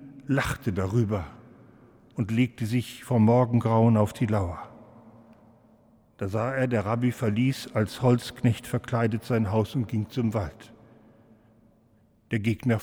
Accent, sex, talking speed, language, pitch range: German, male, 125 wpm, German, 105-125 Hz